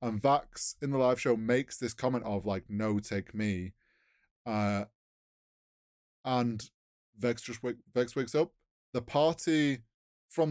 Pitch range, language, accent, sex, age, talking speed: 105-135 Hz, English, British, male, 20-39, 145 wpm